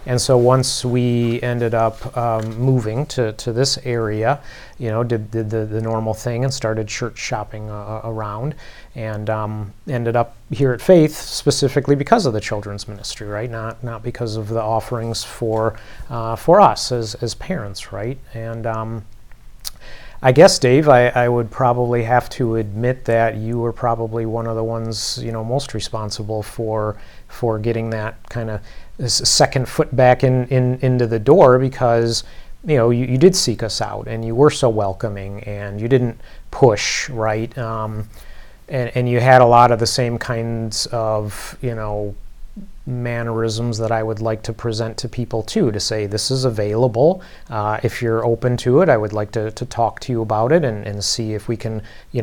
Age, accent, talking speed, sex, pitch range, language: 30-49, American, 185 wpm, male, 110-125 Hz, English